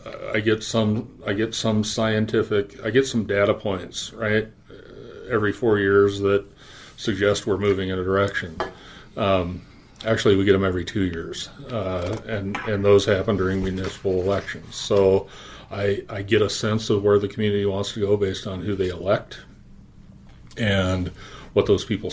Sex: male